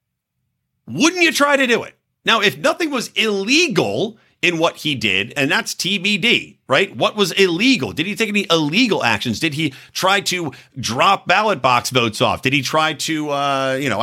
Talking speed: 190 wpm